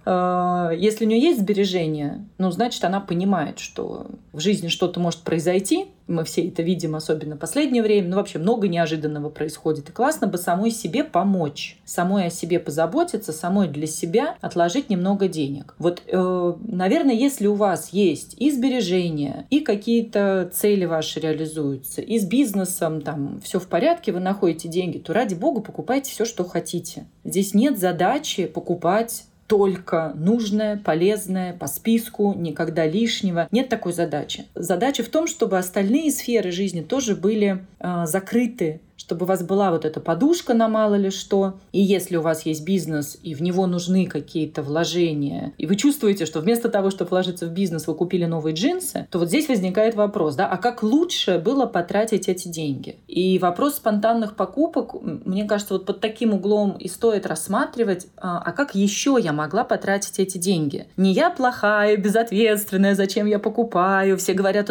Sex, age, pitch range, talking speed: female, 30-49, 170-220 Hz, 165 wpm